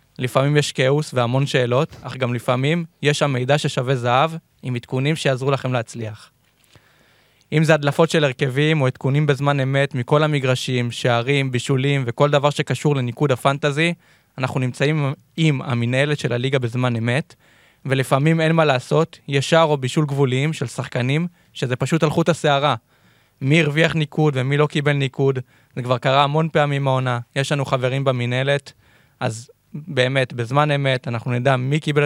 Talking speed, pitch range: 155 wpm, 125-150 Hz